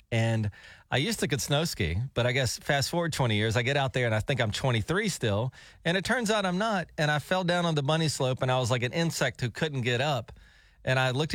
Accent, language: American, English